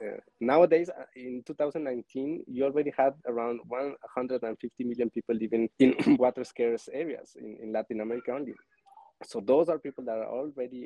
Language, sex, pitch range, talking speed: English, male, 110-135 Hz, 180 wpm